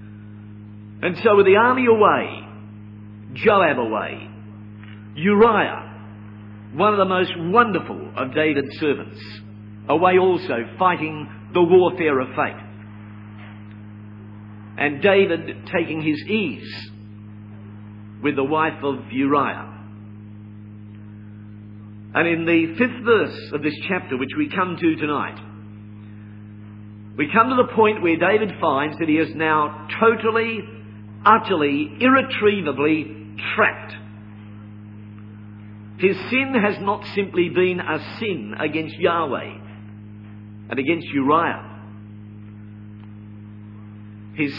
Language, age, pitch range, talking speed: English, 50-69, 105-160 Hz, 105 wpm